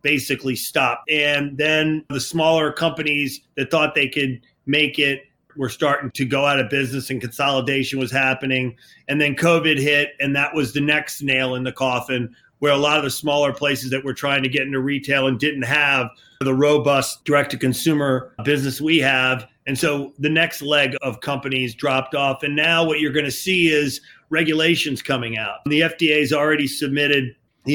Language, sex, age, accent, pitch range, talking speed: English, male, 40-59, American, 130-150 Hz, 185 wpm